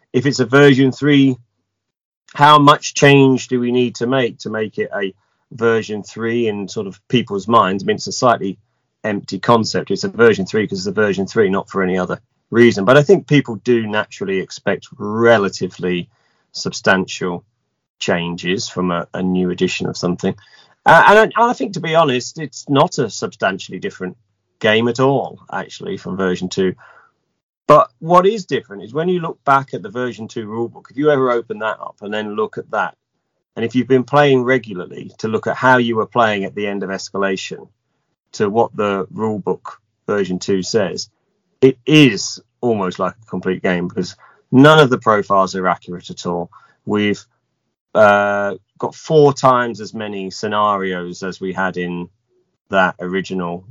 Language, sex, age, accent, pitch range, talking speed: English, male, 30-49, British, 95-135 Hz, 180 wpm